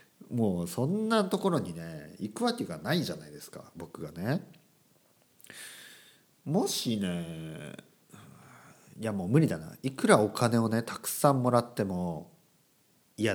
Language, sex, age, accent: Japanese, male, 50-69, native